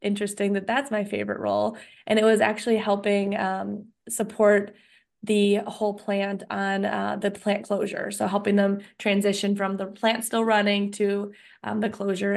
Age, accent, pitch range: 20-39, American, 195-215 Hz